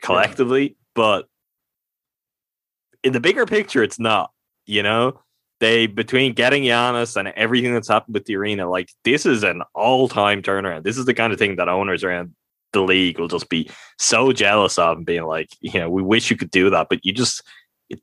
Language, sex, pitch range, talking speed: English, male, 95-120 Hz, 200 wpm